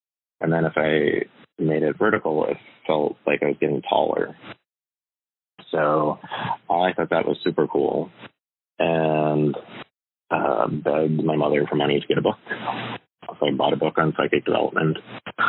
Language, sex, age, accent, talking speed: English, male, 30-49, American, 155 wpm